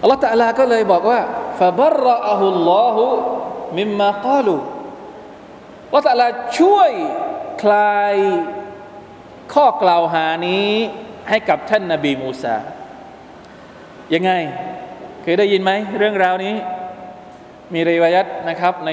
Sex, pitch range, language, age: male, 170-225 Hz, Thai, 20-39